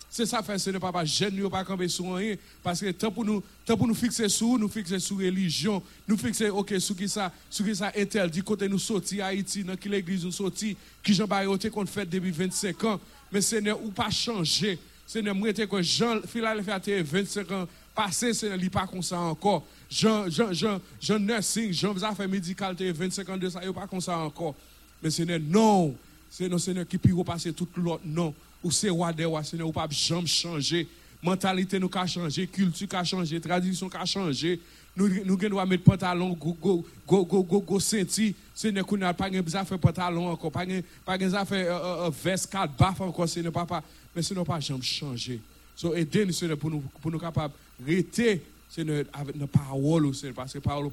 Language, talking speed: French, 220 wpm